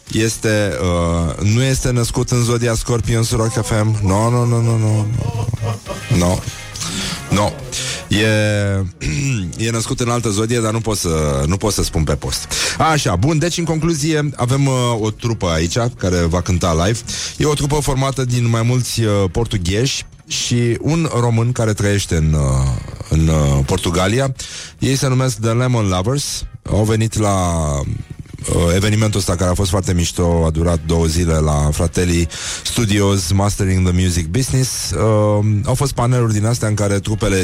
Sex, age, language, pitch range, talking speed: male, 30-49, Romanian, 90-120 Hz, 170 wpm